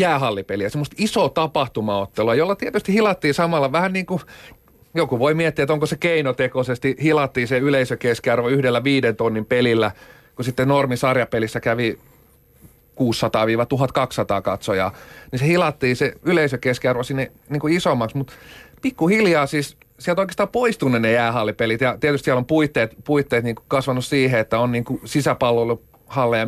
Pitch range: 115-150 Hz